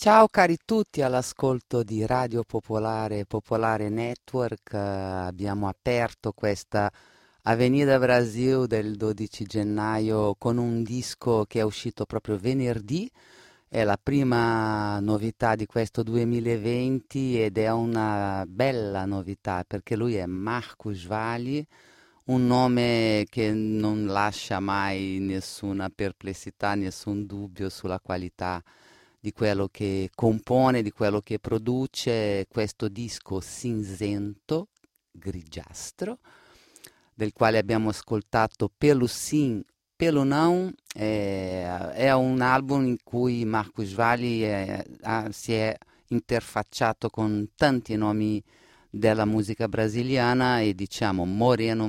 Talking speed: 110 wpm